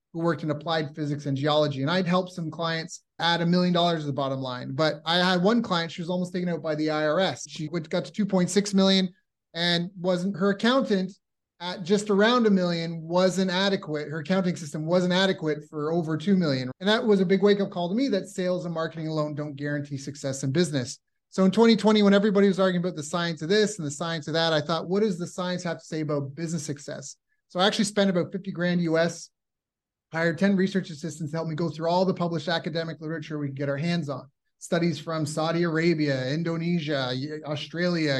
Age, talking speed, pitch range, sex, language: 30-49, 220 wpm, 155-190 Hz, male, English